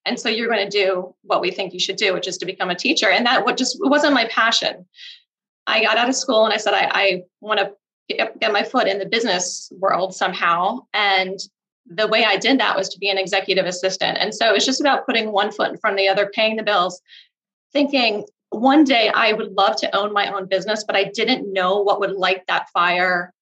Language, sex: English, female